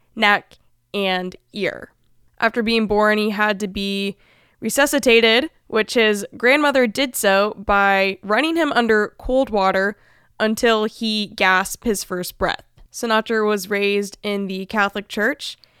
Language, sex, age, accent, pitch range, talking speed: English, female, 20-39, American, 195-235 Hz, 135 wpm